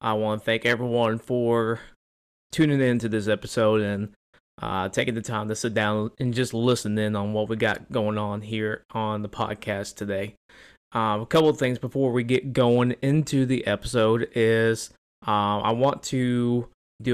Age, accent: 20-39, American